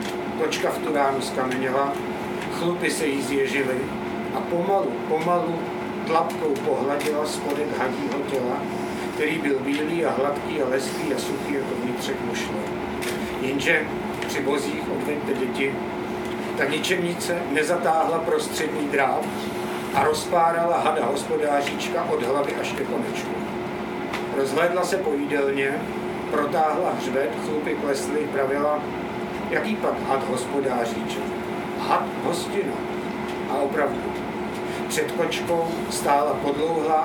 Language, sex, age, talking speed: Czech, male, 60-79, 110 wpm